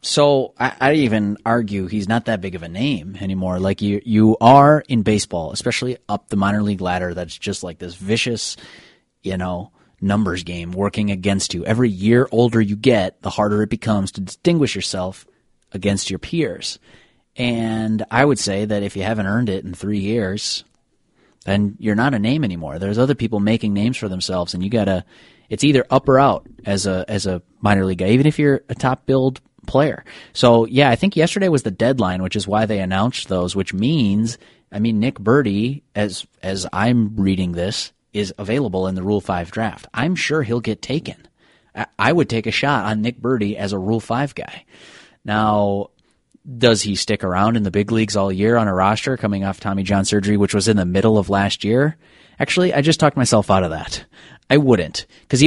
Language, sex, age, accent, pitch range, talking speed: English, male, 30-49, American, 100-120 Hz, 205 wpm